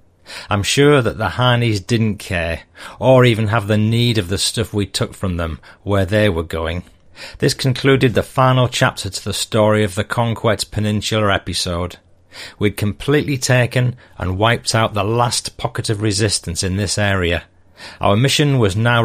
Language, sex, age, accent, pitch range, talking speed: English, male, 40-59, British, 95-120 Hz, 170 wpm